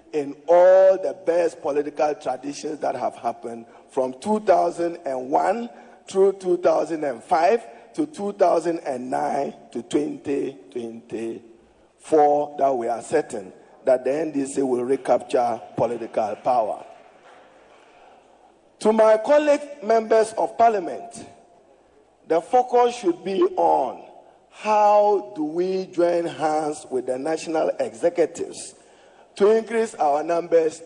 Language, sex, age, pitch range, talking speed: English, male, 50-69, 150-225 Hz, 100 wpm